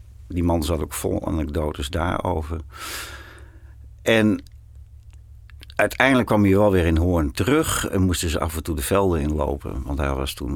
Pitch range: 75-95 Hz